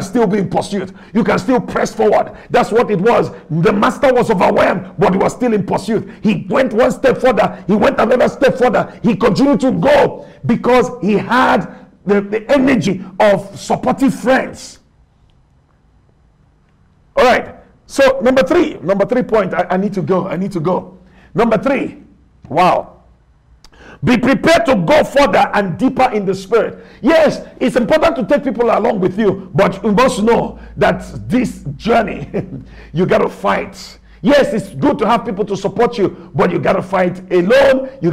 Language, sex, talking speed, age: English, male, 175 wpm, 50-69